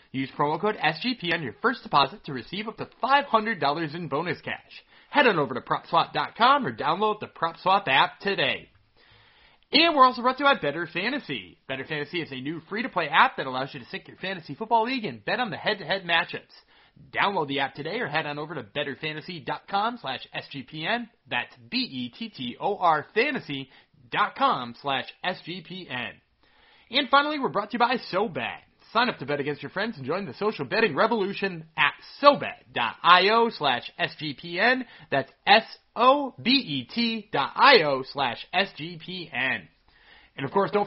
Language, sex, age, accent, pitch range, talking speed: English, male, 30-49, American, 145-225 Hz, 165 wpm